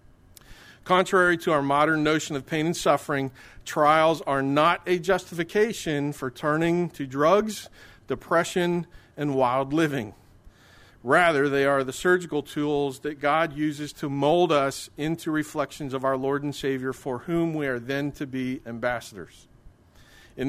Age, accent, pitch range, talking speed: 40-59, American, 125-160 Hz, 145 wpm